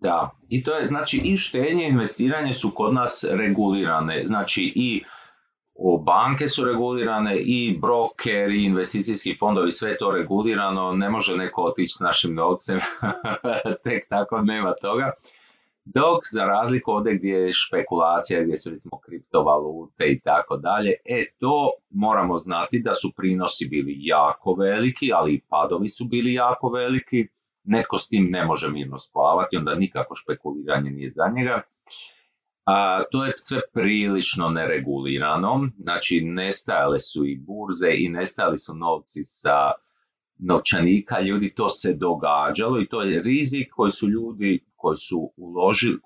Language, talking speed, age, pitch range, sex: Croatian, 140 wpm, 30-49, 85-125 Hz, male